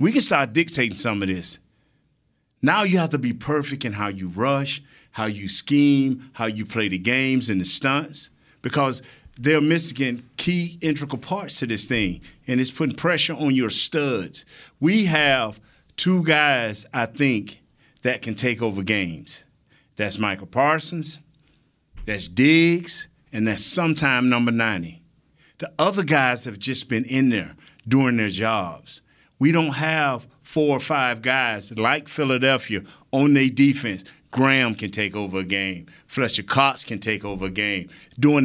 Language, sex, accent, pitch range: English, male, American, 110-150 Hz